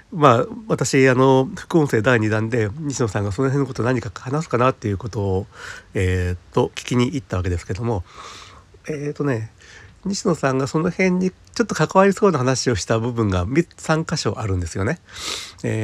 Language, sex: Japanese, male